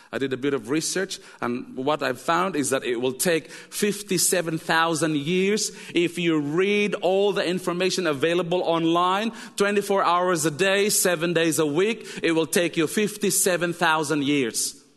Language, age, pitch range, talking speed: English, 40-59, 160-235 Hz, 155 wpm